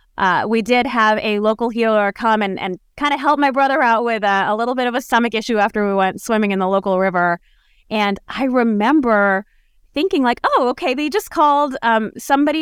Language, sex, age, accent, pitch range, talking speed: English, female, 20-39, American, 195-255 Hz, 215 wpm